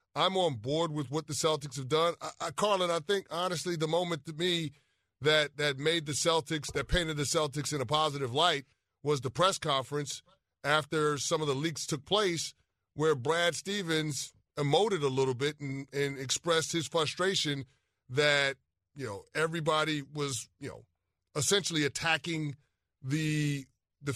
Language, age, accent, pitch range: English, 30-49, American, 140-165 Hz